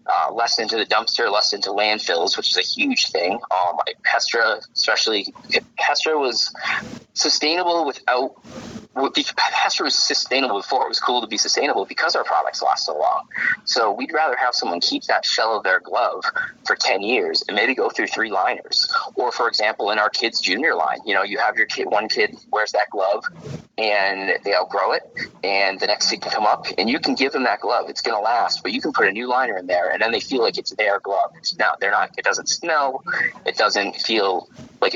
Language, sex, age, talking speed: English, male, 30-49, 220 wpm